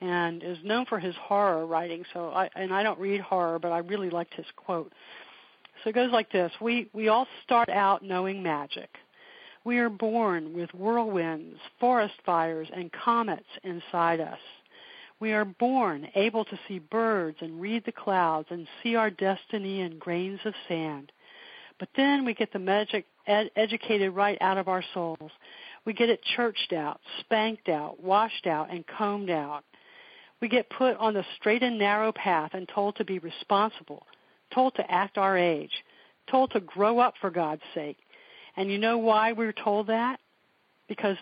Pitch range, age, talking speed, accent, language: 175-225 Hz, 50-69, 175 wpm, American, English